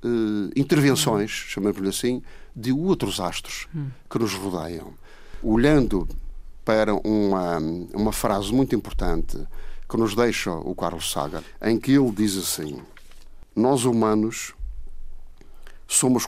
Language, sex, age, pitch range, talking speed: Portuguese, male, 50-69, 95-125 Hz, 110 wpm